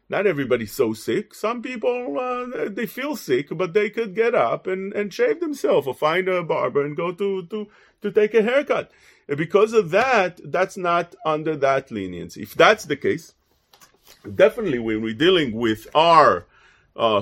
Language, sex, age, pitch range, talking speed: English, male, 40-59, 150-255 Hz, 180 wpm